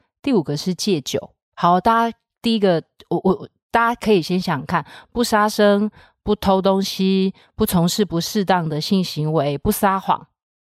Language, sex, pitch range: Chinese, female, 160-210 Hz